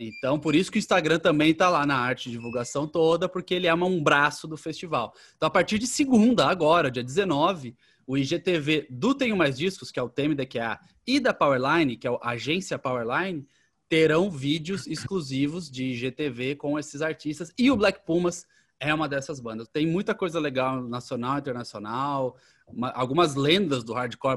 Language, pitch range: Portuguese, 120-155 Hz